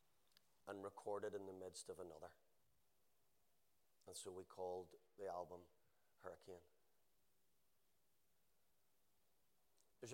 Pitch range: 100-115 Hz